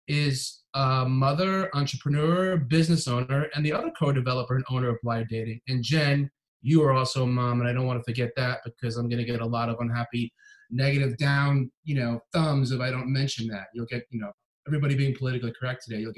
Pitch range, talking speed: 120-140 Hz, 200 wpm